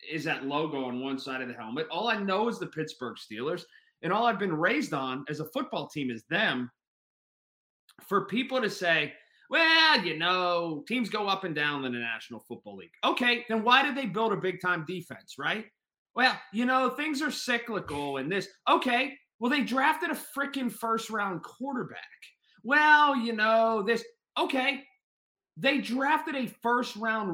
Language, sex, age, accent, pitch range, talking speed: English, male, 30-49, American, 165-255 Hz, 180 wpm